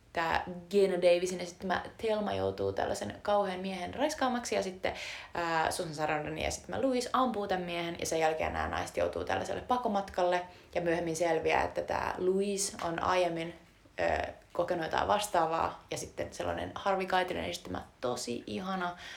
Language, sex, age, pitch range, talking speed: Finnish, female, 20-39, 155-195 Hz, 145 wpm